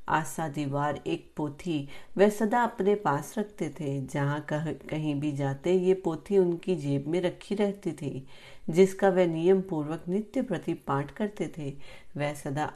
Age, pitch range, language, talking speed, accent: 40-59, 145-180 Hz, Hindi, 115 wpm, native